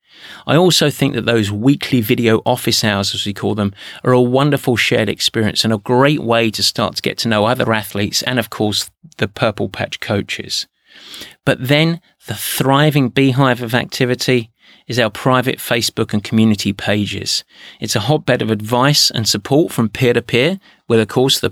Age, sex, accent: 30-49, male, British